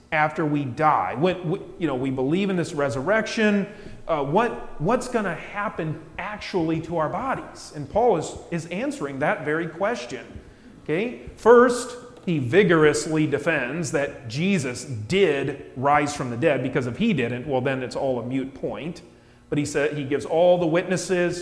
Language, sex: English, male